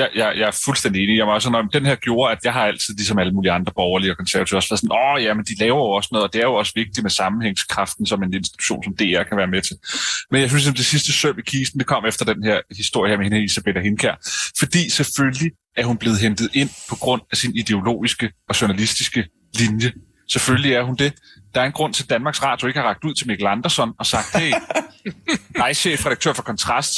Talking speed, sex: 240 wpm, male